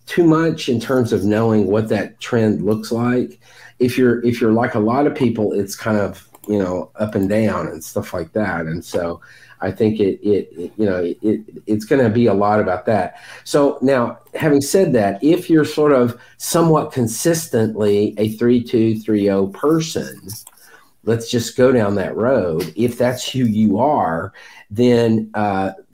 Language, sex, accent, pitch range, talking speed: English, male, American, 95-120 Hz, 185 wpm